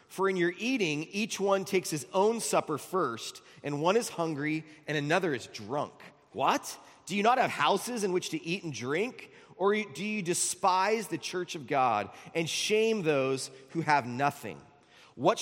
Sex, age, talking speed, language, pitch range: male, 30-49, 180 wpm, English, 140-185 Hz